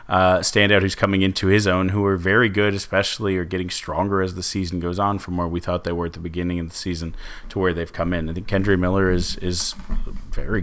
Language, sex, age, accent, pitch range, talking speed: English, male, 30-49, American, 90-100 Hz, 250 wpm